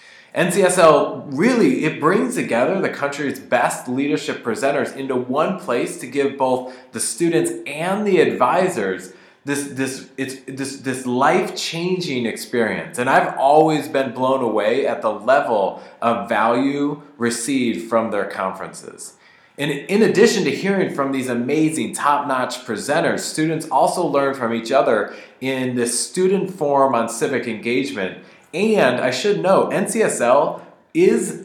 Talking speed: 130 wpm